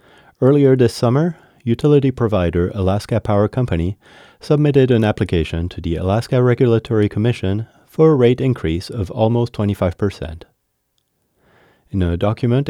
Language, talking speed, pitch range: English, 125 wpm, 95-130 Hz